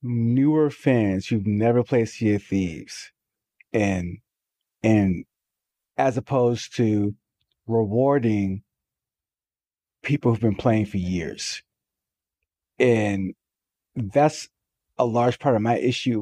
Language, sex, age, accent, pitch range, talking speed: English, male, 30-49, American, 110-145 Hz, 105 wpm